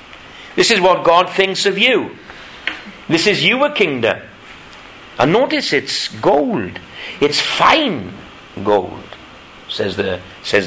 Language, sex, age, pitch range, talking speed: English, male, 60-79, 120-180 Hz, 120 wpm